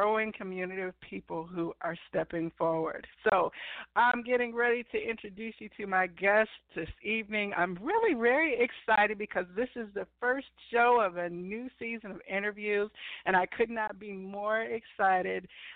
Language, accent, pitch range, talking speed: English, American, 180-225 Hz, 165 wpm